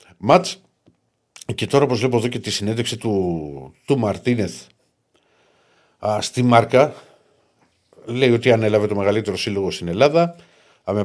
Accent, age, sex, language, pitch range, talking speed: native, 50-69, male, Greek, 100-125 Hz, 125 wpm